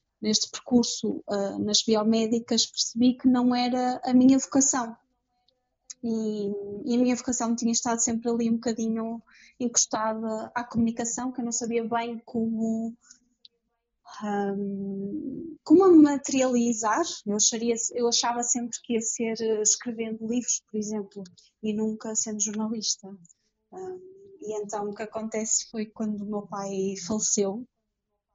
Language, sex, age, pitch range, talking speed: Portuguese, female, 20-39, 210-250 Hz, 125 wpm